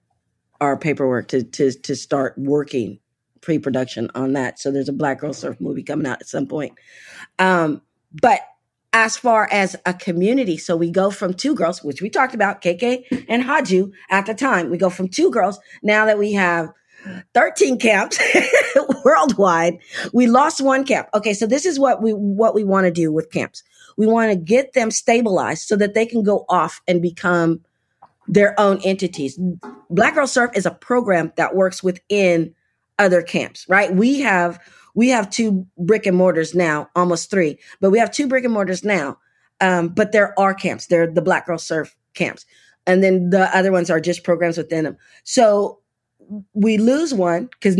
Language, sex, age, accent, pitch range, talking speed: English, female, 40-59, American, 170-220 Hz, 185 wpm